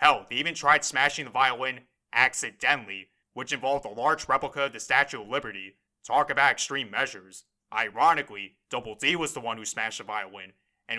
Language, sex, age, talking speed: English, male, 30-49, 180 wpm